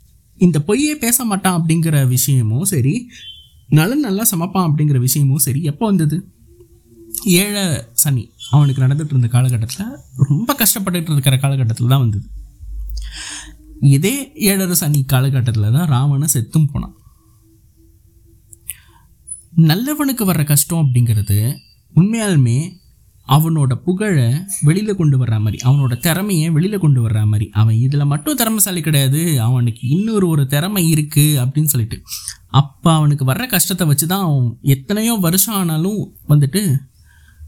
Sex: male